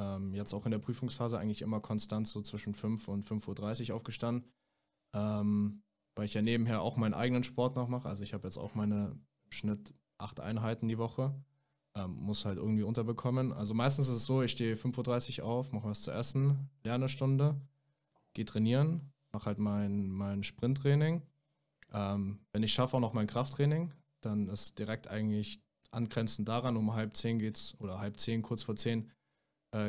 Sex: male